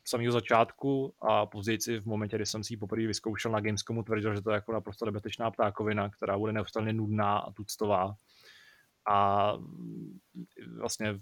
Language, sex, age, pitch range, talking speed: Czech, male, 20-39, 105-115 Hz, 160 wpm